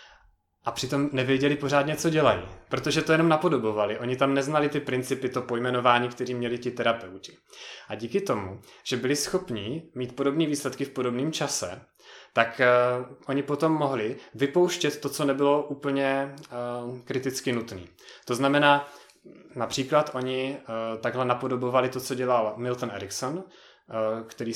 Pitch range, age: 110-135 Hz, 30-49